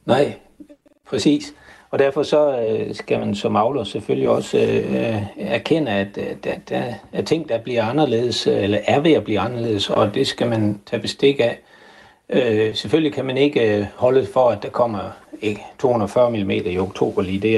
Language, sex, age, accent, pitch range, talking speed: Danish, male, 60-79, native, 105-140 Hz, 190 wpm